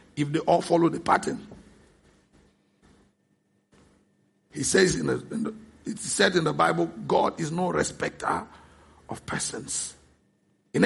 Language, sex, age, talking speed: English, male, 50-69, 110 wpm